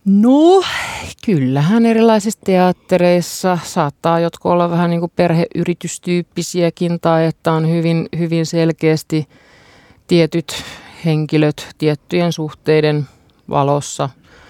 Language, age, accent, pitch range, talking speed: Finnish, 50-69, native, 145-175 Hz, 85 wpm